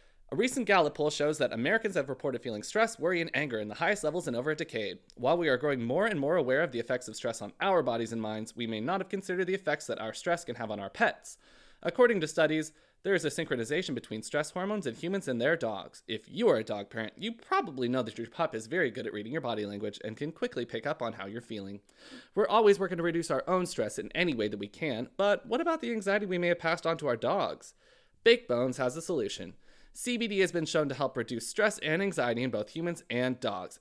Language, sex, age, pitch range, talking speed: English, male, 20-39, 120-200 Hz, 260 wpm